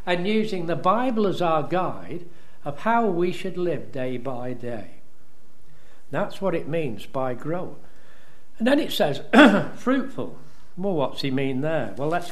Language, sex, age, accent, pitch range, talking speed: English, male, 60-79, British, 150-205 Hz, 160 wpm